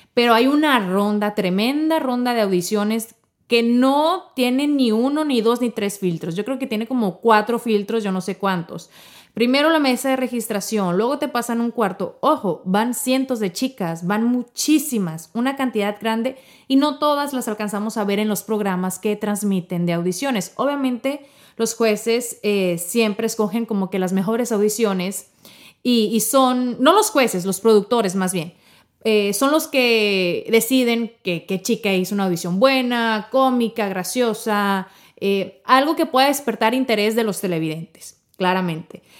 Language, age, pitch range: Spanish, 30-49, 195-255 Hz